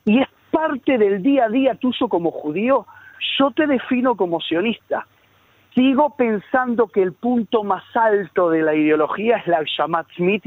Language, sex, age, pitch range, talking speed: Spanish, male, 50-69, 180-255 Hz, 165 wpm